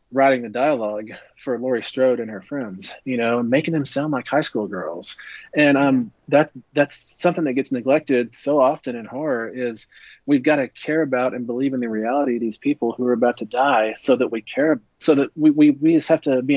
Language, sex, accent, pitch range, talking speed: English, male, American, 120-145 Hz, 225 wpm